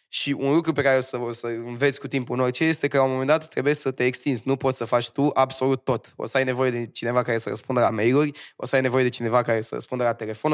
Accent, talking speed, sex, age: native, 300 wpm, male, 20-39